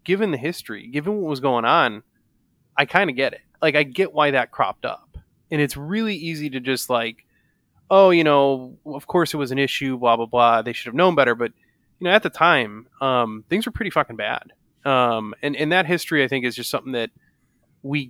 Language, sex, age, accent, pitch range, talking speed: English, male, 20-39, American, 120-155 Hz, 225 wpm